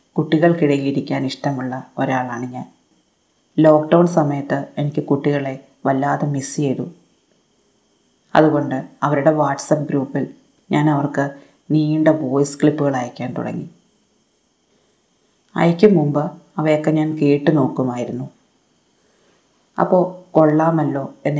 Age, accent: 30-49, native